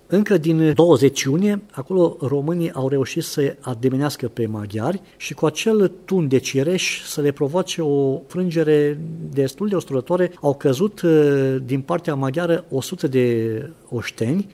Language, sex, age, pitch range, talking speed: English, male, 50-69, 120-155 Hz, 140 wpm